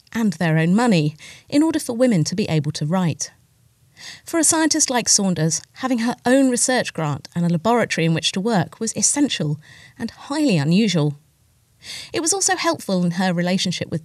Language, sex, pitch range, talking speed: English, female, 155-235 Hz, 185 wpm